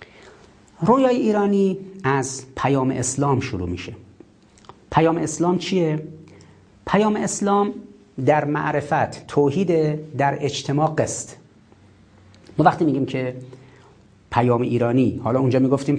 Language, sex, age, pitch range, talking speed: Persian, male, 40-59, 115-170 Hz, 100 wpm